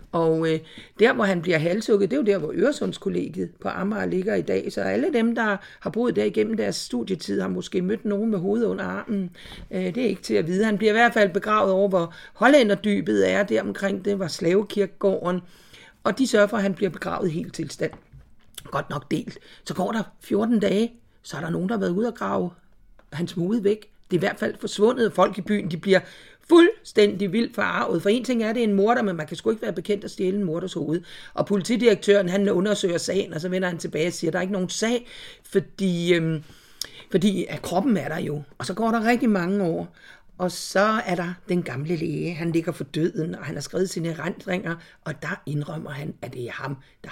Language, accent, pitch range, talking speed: Danish, native, 175-210 Hz, 230 wpm